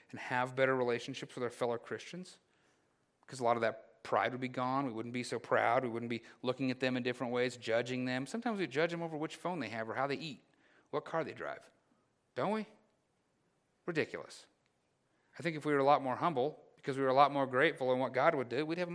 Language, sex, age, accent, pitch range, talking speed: English, male, 40-59, American, 120-145 Hz, 245 wpm